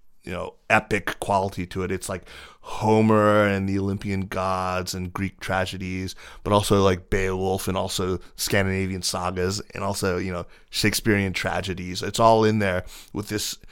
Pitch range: 90-105 Hz